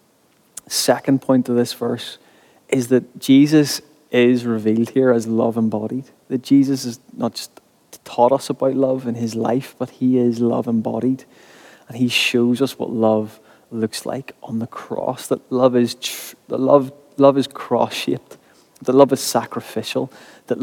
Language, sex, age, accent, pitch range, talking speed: English, male, 20-39, British, 115-135 Hz, 165 wpm